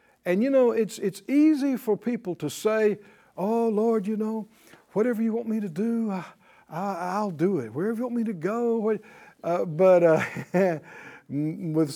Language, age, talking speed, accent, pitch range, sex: English, 60-79, 175 wpm, American, 170-230 Hz, male